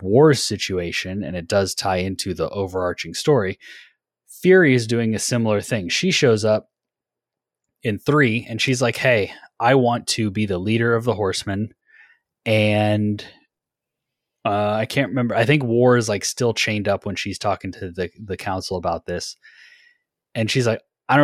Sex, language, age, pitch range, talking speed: male, English, 20-39, 95-115 Hz, 170 wpm